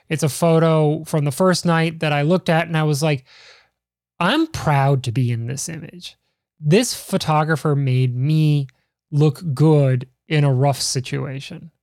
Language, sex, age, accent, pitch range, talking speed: English, male, 20-39, American, 140-165 Hz, 160 wpm